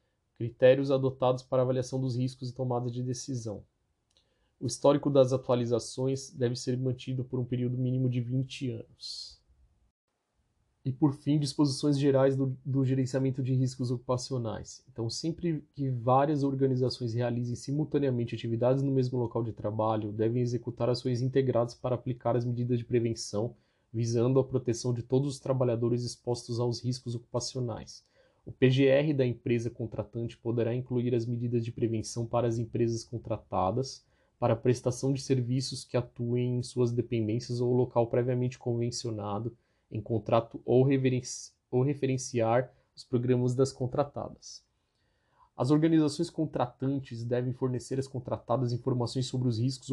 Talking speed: 140 wpm